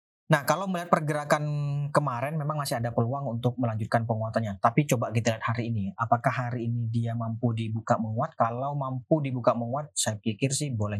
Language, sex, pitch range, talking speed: Indonesian, male, 115-145 Hz, 180 wpm